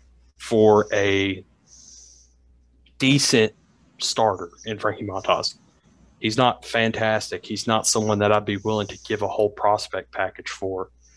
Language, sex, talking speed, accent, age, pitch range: English, male, 130 wpm, American, 30-49, 100-120 Hz